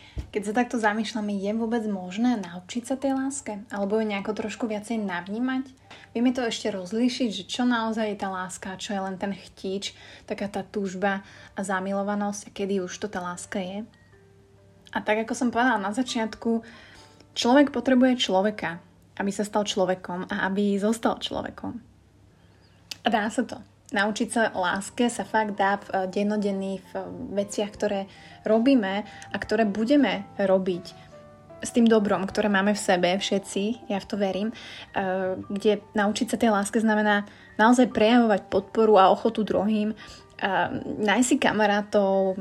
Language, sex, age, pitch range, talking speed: Slovak, female, 20-39, 195-230 Hz, 155 wpm